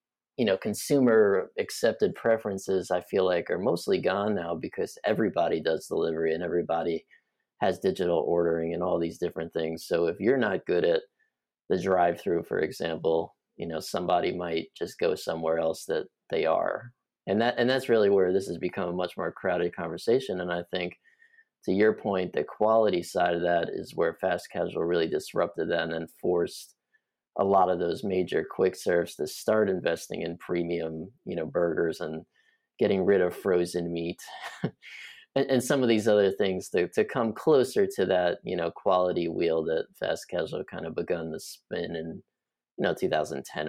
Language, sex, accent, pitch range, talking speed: English, male, American, 85-125 Hz, 180 wpm